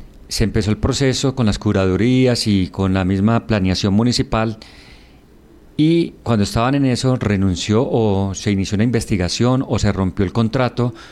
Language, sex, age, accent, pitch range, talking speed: Spanish, male, 40-59, Colombian, 100-125 Hz, 155 wpm